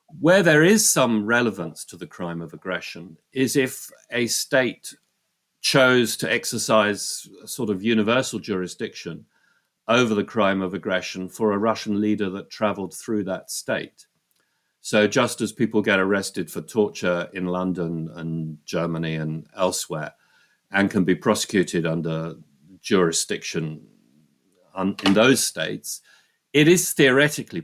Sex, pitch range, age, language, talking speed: male, 85-105 Hz, 50-69, English, 135 wpm